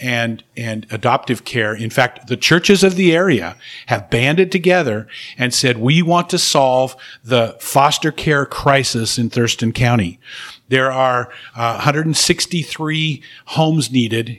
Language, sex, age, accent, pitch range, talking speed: English, male, 50-69, American, 120-140 Hz, 140 wpm